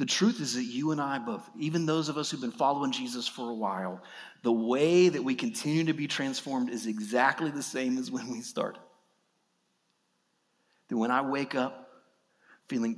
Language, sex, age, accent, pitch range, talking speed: English, male, 40-59, American, 125-175 Hz, 190 wpm